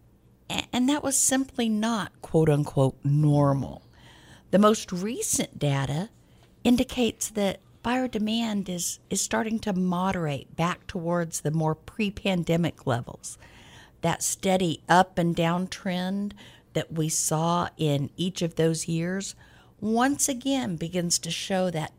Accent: American